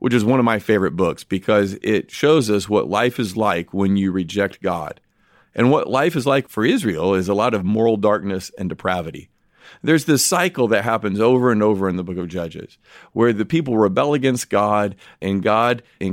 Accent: American